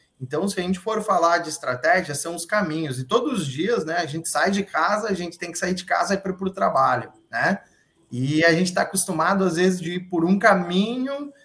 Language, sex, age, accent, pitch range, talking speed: Portuguese, male, 20-39, Brazilian, 140-185 Hz, 240 wpm